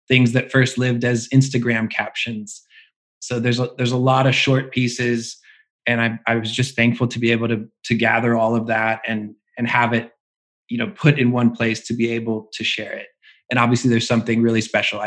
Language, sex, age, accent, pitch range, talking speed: English, male, 20-39, American, 115-125 Hz, 210 wpm